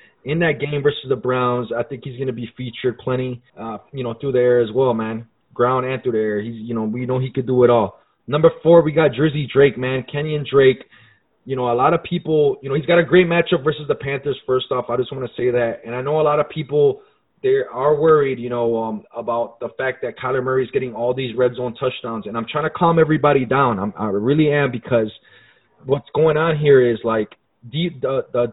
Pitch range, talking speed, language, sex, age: 120-150 Hz, 245 wpm, English, male, 20-39